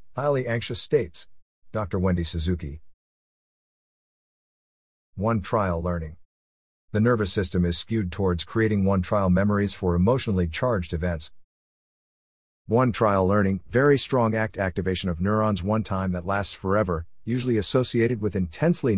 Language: English